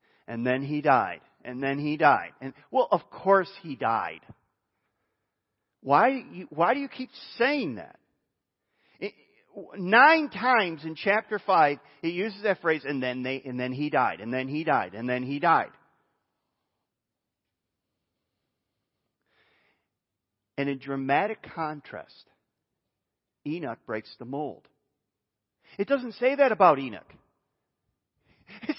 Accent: American